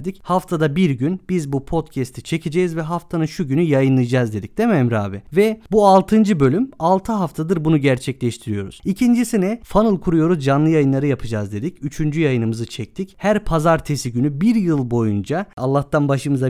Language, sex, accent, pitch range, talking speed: Turkish, male, native, 130-195 Hz, 160 wpm